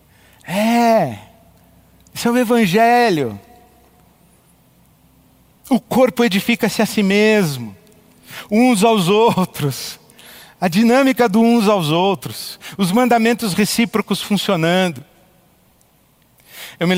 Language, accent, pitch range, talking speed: Portuguese, Brazilian, 155-195 Hz, 90 wpm